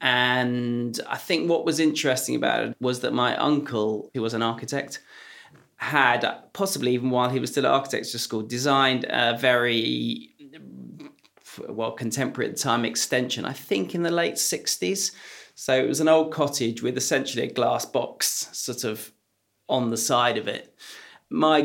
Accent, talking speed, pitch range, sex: British, 165 wpm, 110-135 Hz, male